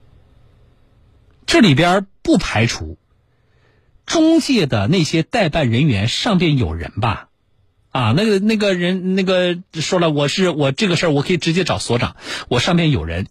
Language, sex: Chinese, male